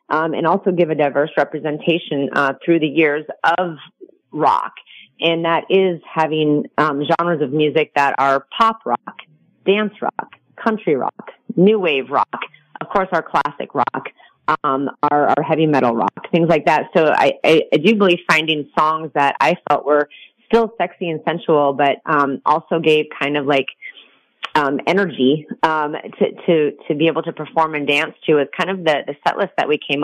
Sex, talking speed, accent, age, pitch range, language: female, 185 wpm, American, 30-49, 145-170 Hz, English